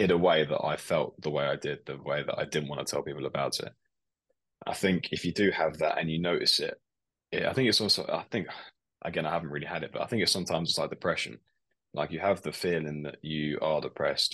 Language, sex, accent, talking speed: English, male, British, 255 wpm